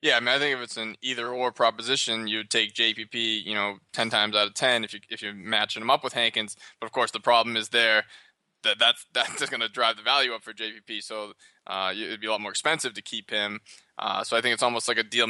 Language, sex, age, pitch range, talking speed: English, male, 20-39, 115-135 Hz, 265 wpm